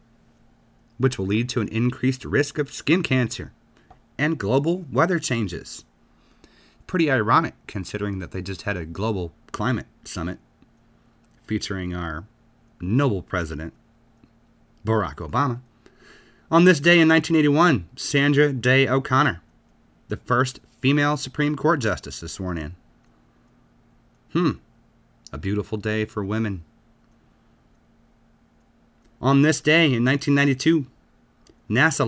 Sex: male